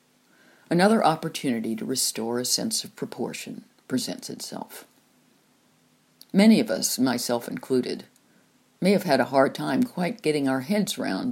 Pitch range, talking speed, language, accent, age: 125-185 Hz, 140 wpm, English, American, 50-69